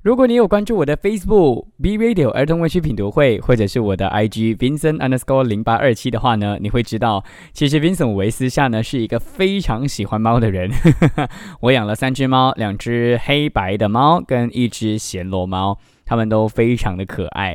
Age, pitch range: 20-39, 105-145 Hz